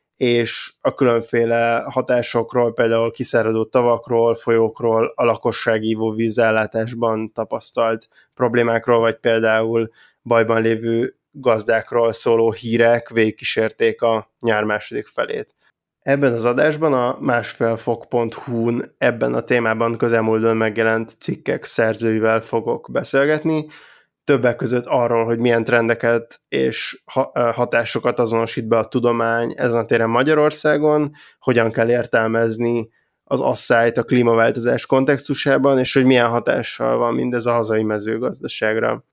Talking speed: 110 wpm